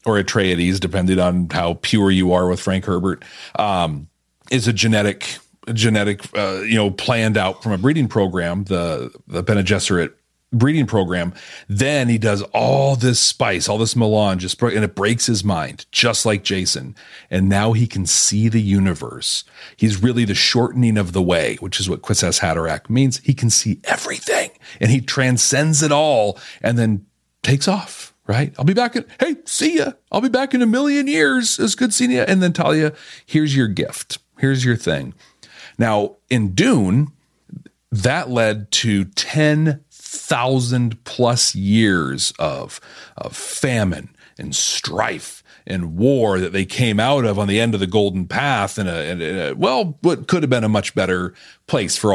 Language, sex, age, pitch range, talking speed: English, male, 40-59, 95-130 Hz, 170 wpm